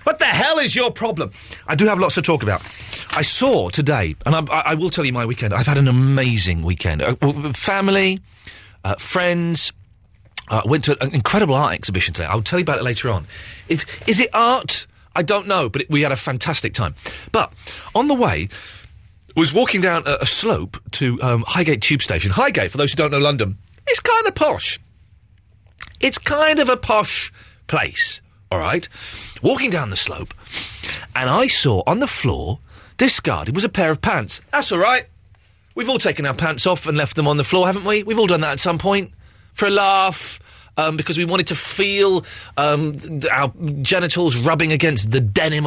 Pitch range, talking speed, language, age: 110-180 Hz, 200 wpm, English, 40-59